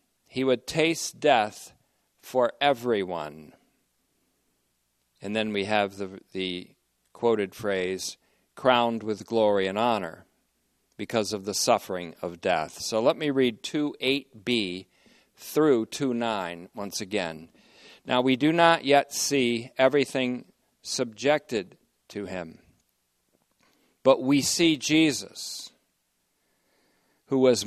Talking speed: 110 wpm